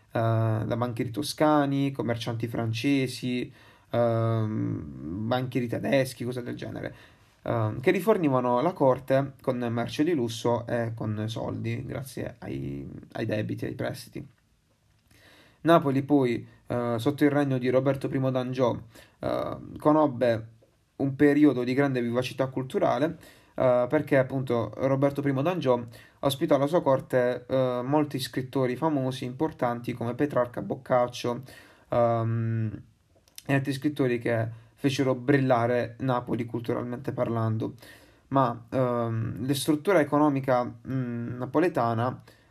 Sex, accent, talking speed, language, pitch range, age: male, native, 110 wpm, Italian, 120-140 Hz, 20-39